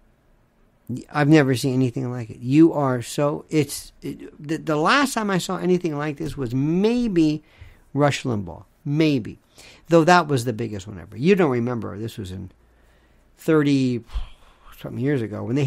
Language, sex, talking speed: English, male, 165 wpm